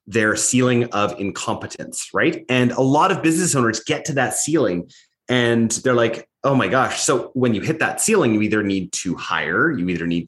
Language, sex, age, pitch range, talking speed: English, male, 30-49, 115-175 Hz, 205 wpm